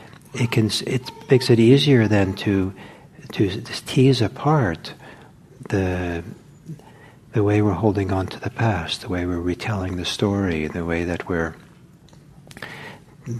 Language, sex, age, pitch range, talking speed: English, male, 60-79, 95-130 Hz, 145 wpm